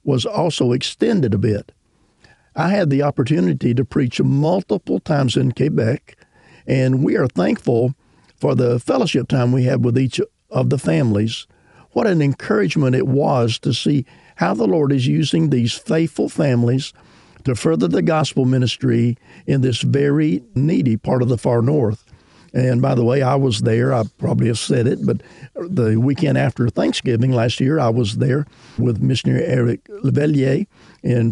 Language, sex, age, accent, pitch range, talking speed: English, male, 50-69, American, 120-145 Hz, 165 wpm